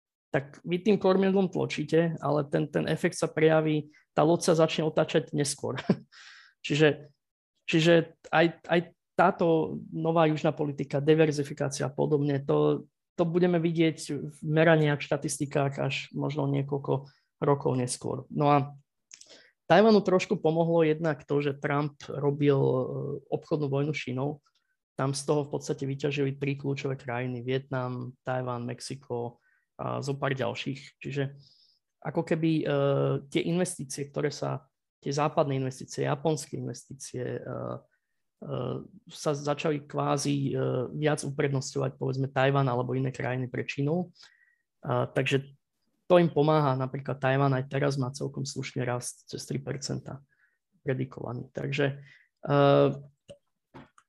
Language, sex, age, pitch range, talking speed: Slovak, male, 20-39, 135-160 Hz, 125 wpm